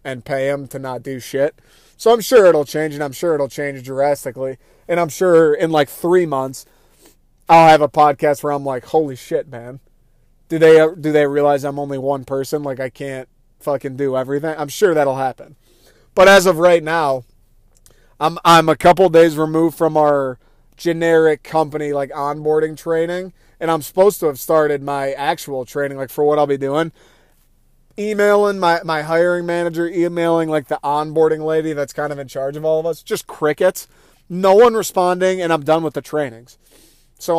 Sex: male